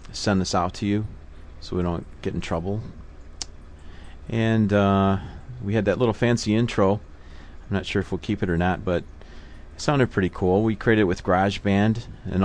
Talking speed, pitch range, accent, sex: 190 wpm, 80-105 Hz, American, male